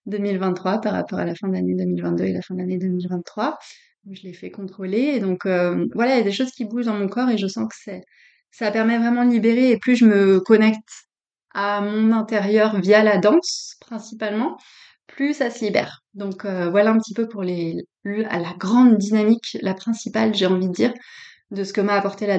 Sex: female